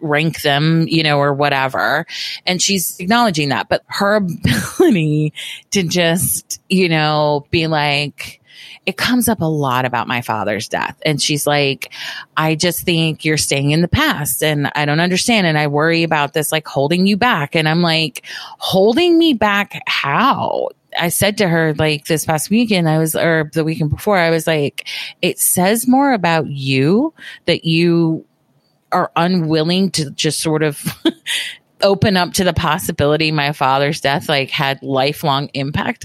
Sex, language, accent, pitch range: female, English, American, 150-195 Hz